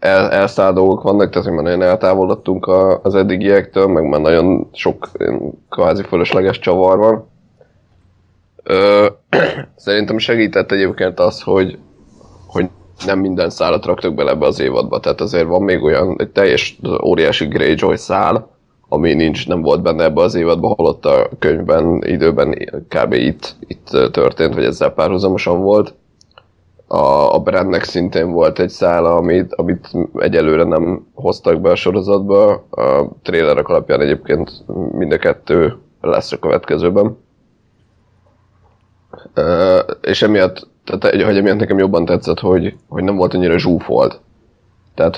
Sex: male